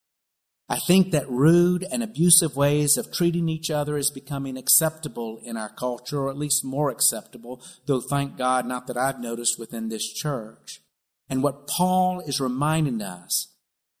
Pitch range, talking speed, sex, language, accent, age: 120-155 Hz, 165 wpm, male, English, American, 50-69